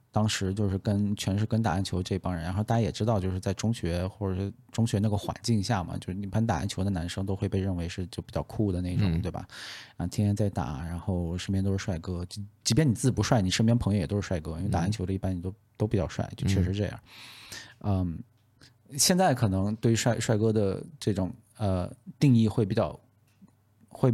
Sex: male